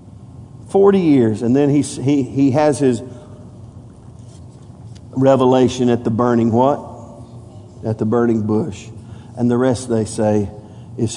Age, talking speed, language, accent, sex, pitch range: 50-69, 125 wpm, English, American, male, 115-145 Hz